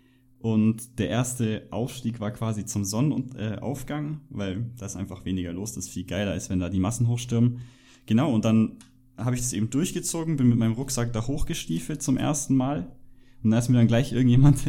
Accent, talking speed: German, 190 wpm